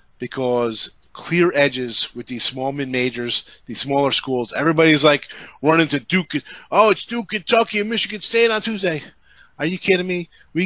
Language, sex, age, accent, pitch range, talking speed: English, male, 30-49, American, 130-175 Hz, 160 wpm